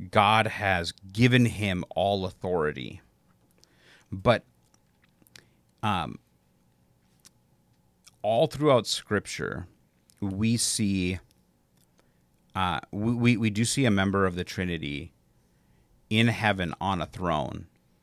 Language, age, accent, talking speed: English, 40-59, American, 95 wpm